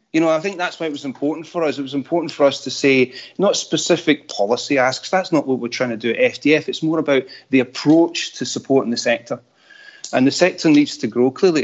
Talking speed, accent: 240 wpm, British